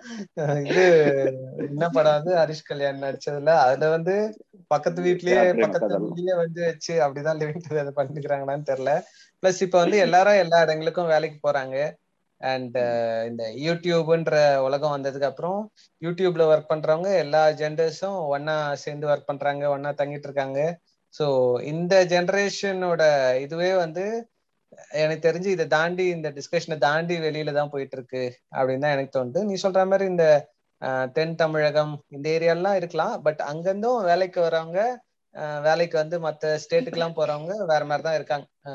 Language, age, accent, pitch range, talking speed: Tamil, 20-39, native, 140-175 Hz, 115 wpm